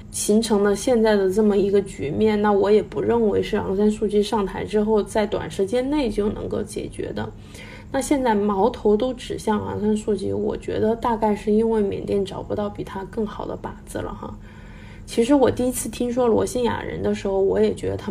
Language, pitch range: Chinese, 200-240 Hz